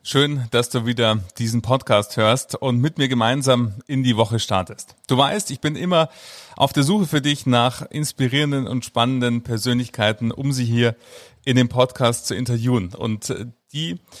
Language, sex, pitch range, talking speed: German, male, 120-140 Hz, 170 wpm